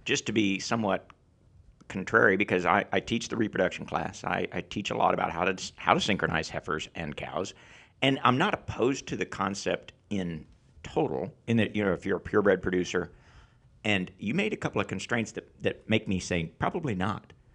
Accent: American